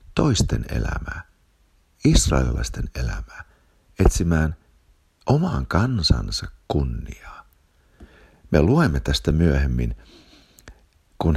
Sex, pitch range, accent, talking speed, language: male, 70-85 Hz, native, 70 wpm, Finnish